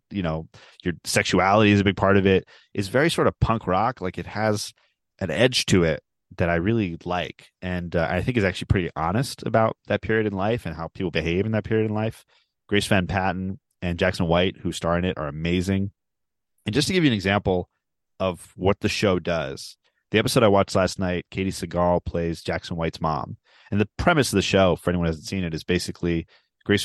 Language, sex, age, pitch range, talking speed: English, male, 30-49, 90-110 Hz, 225 wpm